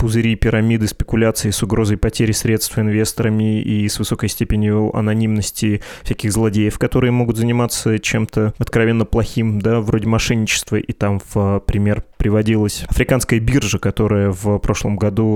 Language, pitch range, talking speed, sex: Russian, 105-120 Hz, 135 wpm, male